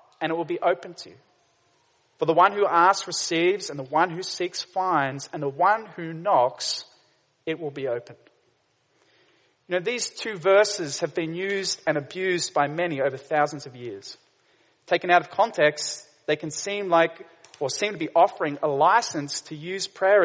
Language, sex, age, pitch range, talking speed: English, male, 30-49, 150-205 Hz, 185 wpm